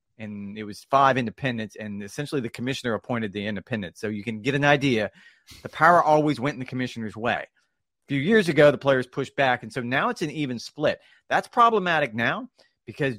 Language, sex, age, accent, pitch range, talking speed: English, male, 30-49, American, 120-160 Hz, 205 wpm